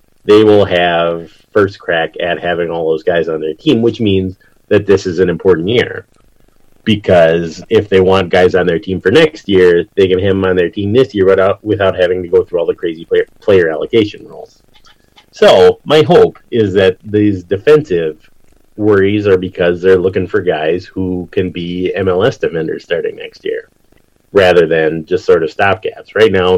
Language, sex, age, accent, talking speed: English, male, 30-49, American, 190 wpm